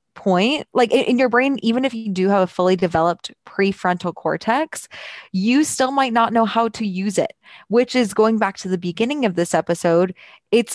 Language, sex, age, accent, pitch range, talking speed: English, female, 20-39, American, 190-245 Hz, 195 wpm